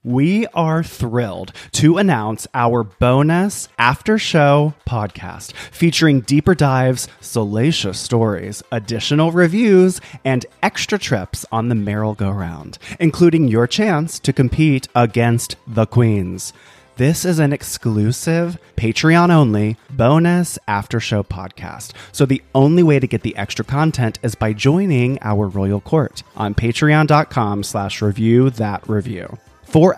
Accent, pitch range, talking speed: American, 105-155 Hz, 125 wpm